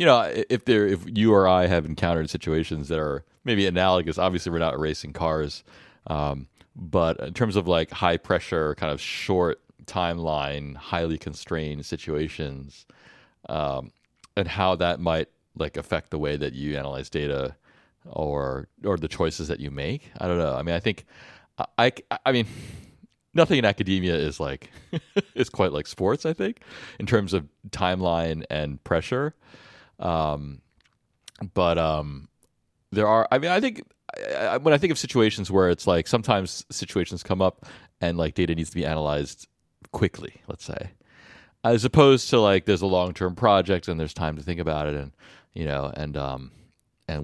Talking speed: 170 wpm